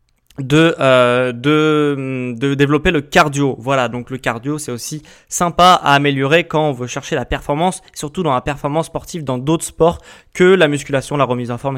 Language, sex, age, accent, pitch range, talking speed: French, male, 20-39, French, 140-170 Hz, 190 wpm